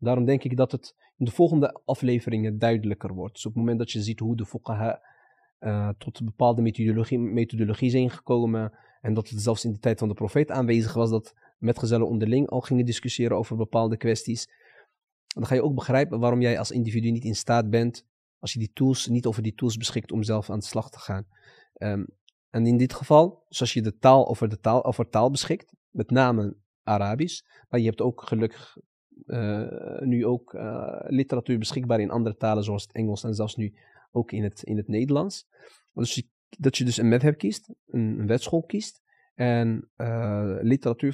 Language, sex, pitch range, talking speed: Dutch, male, 110-130 Hz, 195 wpm